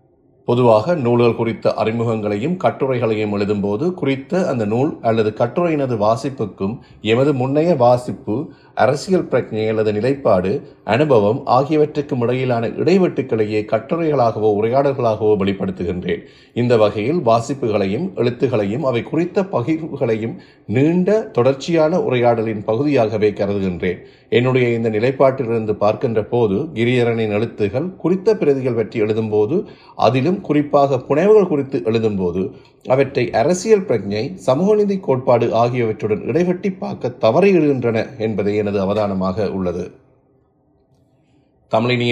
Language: Tamil